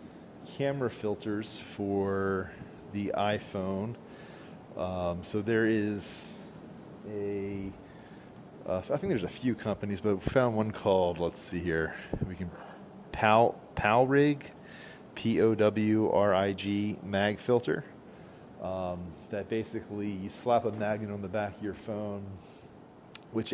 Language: English